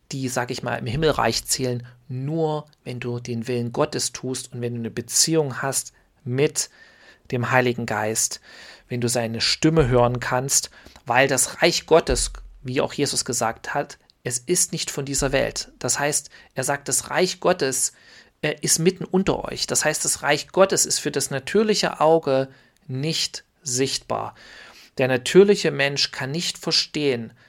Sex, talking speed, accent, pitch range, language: male, 160 wpm, German, 125-155 Hz, German